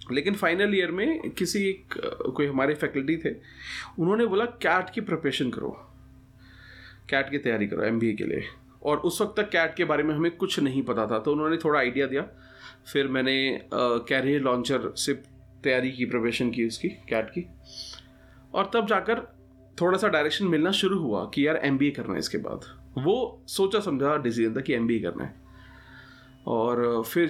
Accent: native